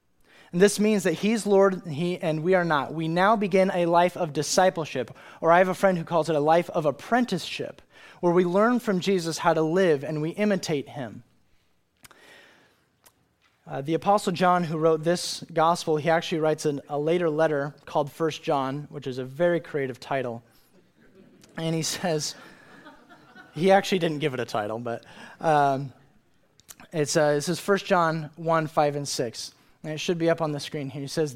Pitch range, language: 150-185 Hz, English